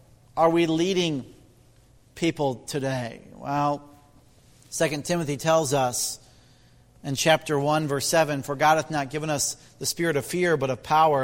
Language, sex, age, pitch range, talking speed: English, male, 40-59, 130-170 Hz, 150 wpm